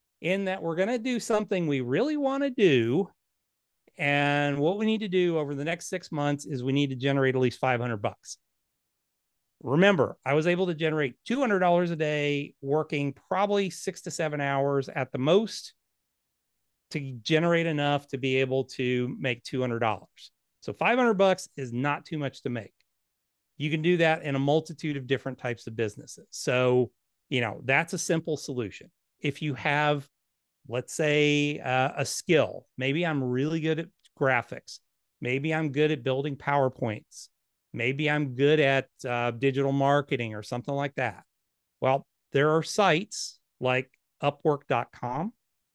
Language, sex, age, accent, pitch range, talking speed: English, male, 40-59, American, 130-165 Hz, 160 wpm